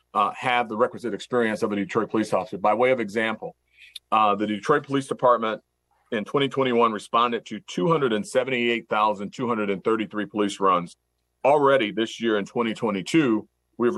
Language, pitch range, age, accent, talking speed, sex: English, 100-120 Hz, 40-59, American, 135 wpm, male